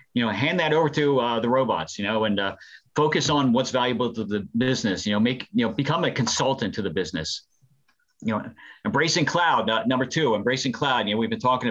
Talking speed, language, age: 230 wpm, English, 40-59